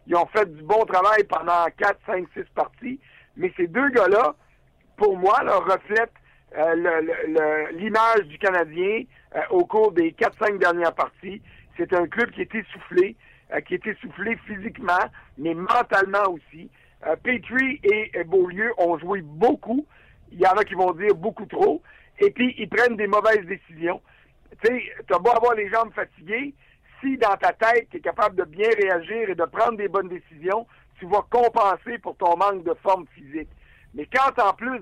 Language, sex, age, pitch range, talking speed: French, male, 60-79, 180-235 Hz, 195 wpm